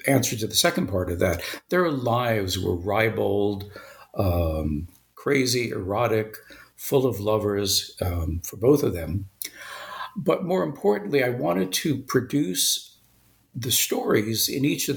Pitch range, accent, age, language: 100-135 Hz, American, 60-79, English